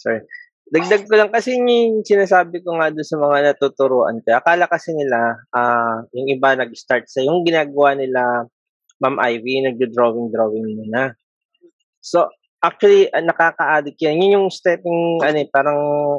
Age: 20-39